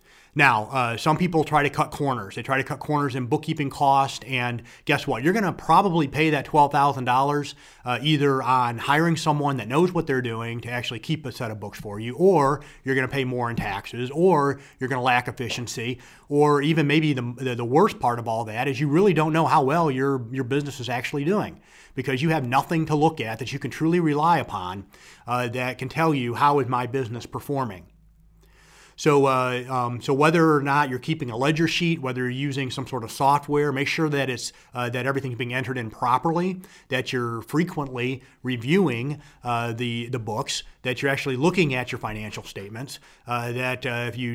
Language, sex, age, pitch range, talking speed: English, male, 30-49, 125-150 Hz, 210 wpm